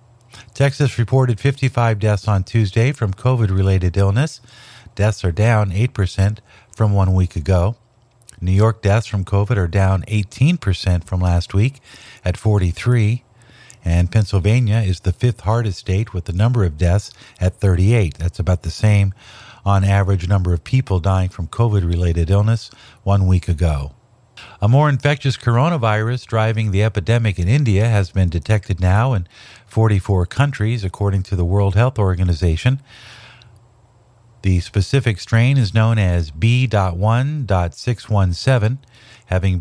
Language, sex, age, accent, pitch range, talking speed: English, male, 50-69, American, 95-120 Hz, 135 wpm